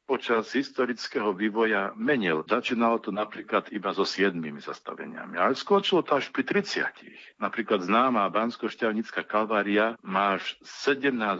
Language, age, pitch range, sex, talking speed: Slovak, 50-69, 100-125 Hz, male, 125 wpm